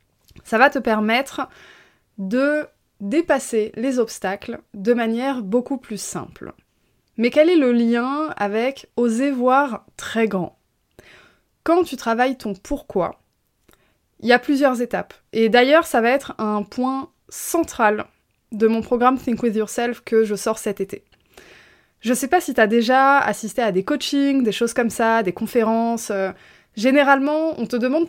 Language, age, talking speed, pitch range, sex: French, 20-39, 160 wpm, 220-275 Hz, female